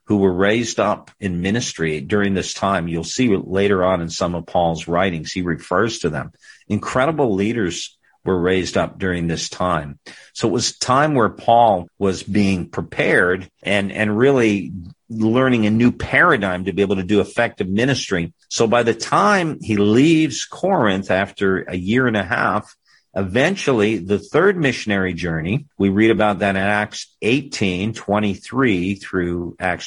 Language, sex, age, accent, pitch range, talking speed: English, male, 50-69, American, 90-115 Hz, 165 wpm